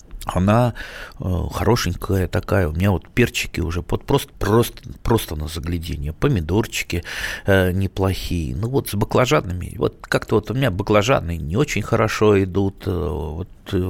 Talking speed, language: 135 wpm, Russian